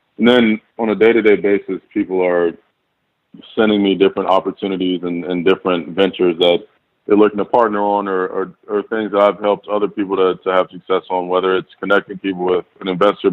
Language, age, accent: English, 20-39, American